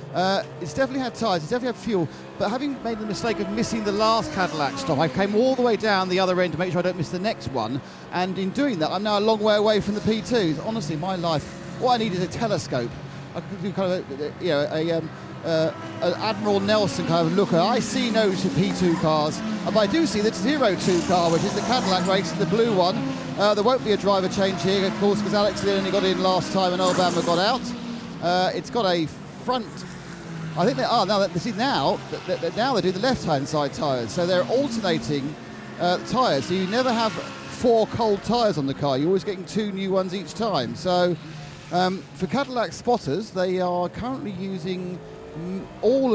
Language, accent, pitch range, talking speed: English, British, 170-215 Hz, 230 wpm